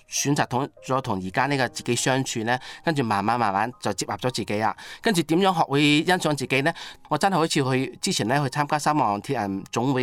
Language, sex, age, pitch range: Chinese, male, 30-49, 120-160 Hz